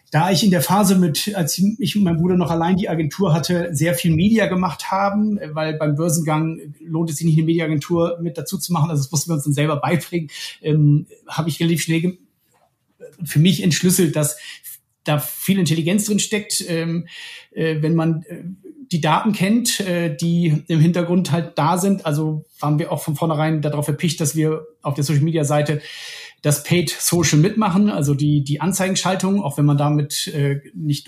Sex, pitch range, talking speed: male, 145-180 Hz, 190 wpm